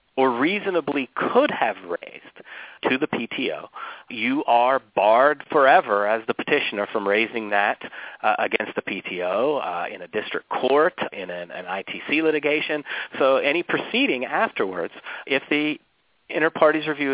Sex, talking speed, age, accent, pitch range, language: male, 145 wpm, 40-59, American, 100-150 Hz, English